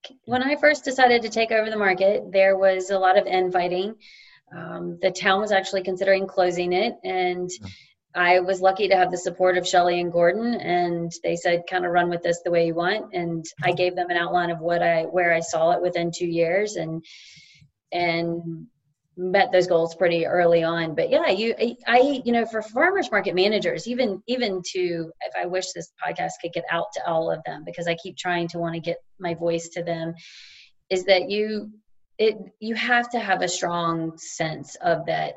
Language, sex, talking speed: English, female, 205 wpm